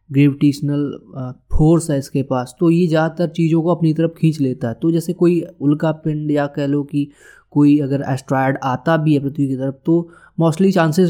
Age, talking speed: 20-39, 190 wpm